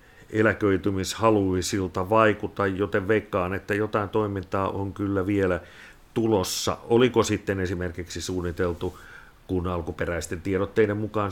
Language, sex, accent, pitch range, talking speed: Finnish, male, native, 90-110 Hz, 100 wpm